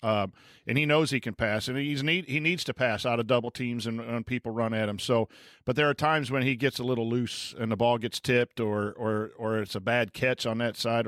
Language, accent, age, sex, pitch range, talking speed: English, American, 50-69, male, 120-150 Hz, 270 wpm